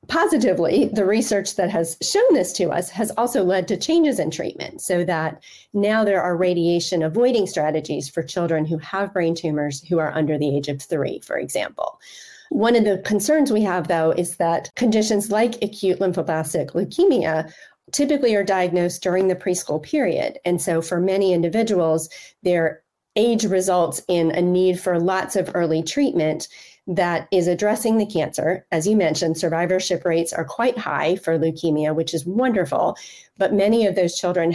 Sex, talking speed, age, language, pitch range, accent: female, 170 wpm, 40-59, English, 165-215 Hz, American